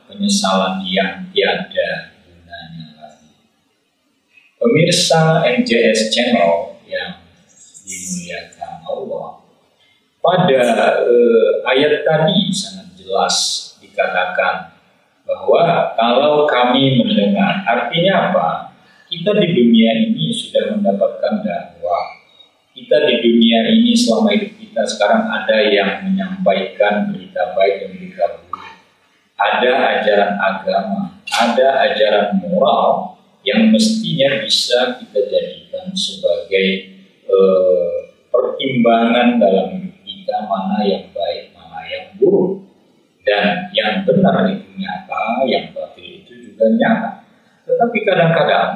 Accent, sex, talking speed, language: native, male, 100 wpm, Indonesian